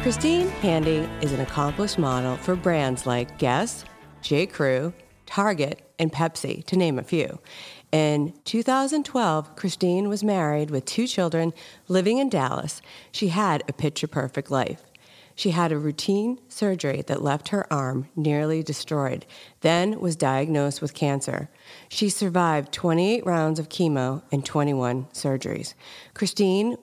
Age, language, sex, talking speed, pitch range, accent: 40-59, English, female, 135 wpm, 140-190 Hz, American